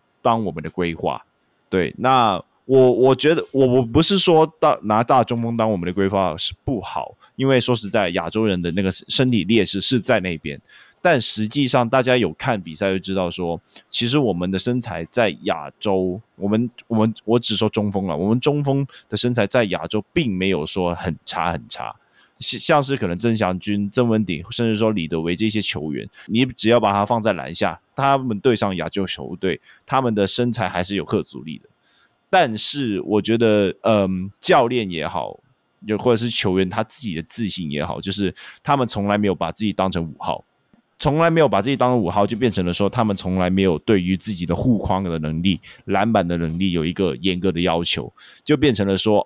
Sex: male